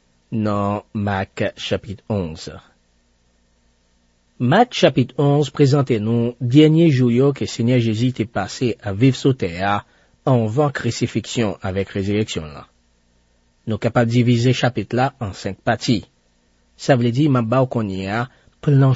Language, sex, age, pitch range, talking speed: French, male, 40-59, 100-140 Hz, 135 wpm